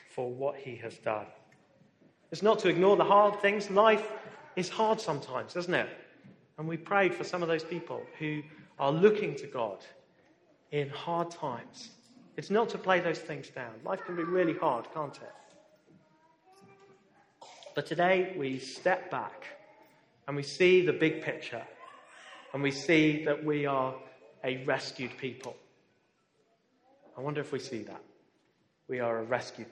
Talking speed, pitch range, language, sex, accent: 160 wpm, 150-200 Hz, English, male, British